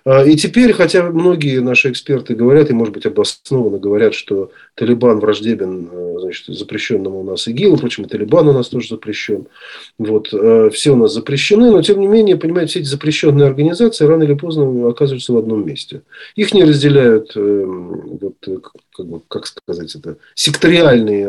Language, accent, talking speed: Russian, native, 155 wpm